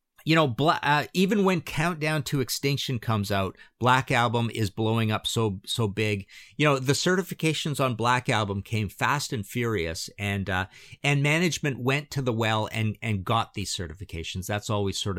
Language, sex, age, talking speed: English, male, 50-69, 175 wpm